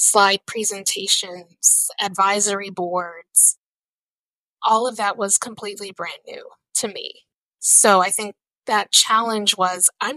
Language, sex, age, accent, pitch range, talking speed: English, female, 20-39, American, 190-230 Hz, 120 wpm